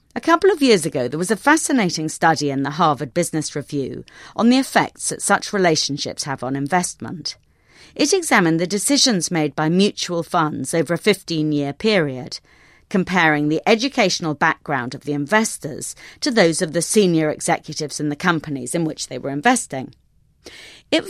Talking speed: 165 wpm